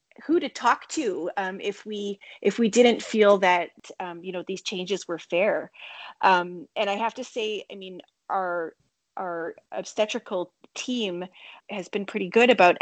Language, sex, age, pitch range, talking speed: English, female, 30-49, 175-205 Hz, 170 wpm